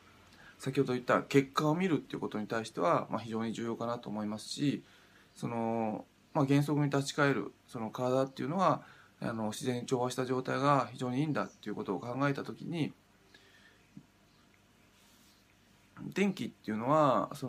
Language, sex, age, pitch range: Japanese, male, 20-39, 110-140 Hz